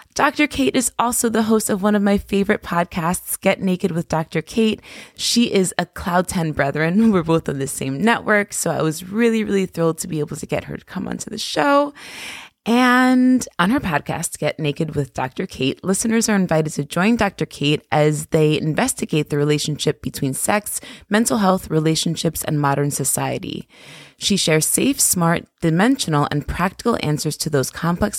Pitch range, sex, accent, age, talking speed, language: 150-215 Hz, female, American, 20-39, 185 wpm, English